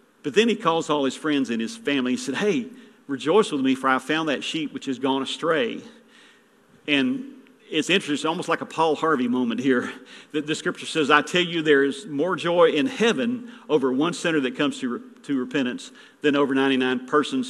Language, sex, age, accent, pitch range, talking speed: English, male, 50-69, American, 145-235 Hz, 210 wpm